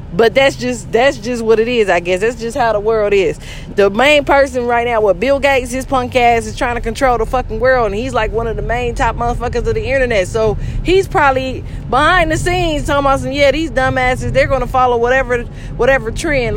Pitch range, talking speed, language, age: 200-250 Hz, 230 wpm, English, 20-39